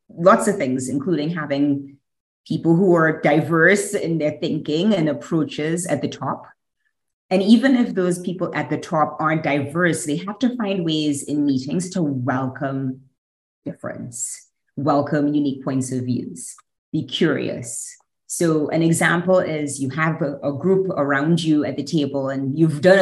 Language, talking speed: English, 160 wpm